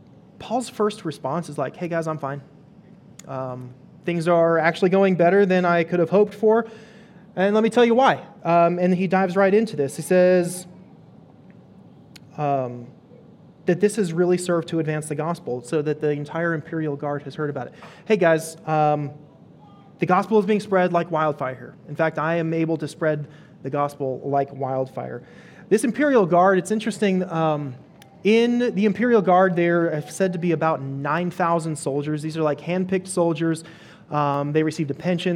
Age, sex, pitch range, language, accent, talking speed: 30-49, male, 150-185 Hz, English, American, 180 wpm